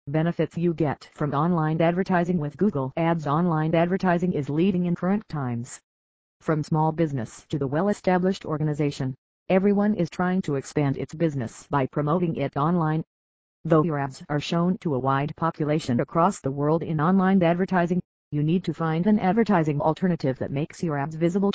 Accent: American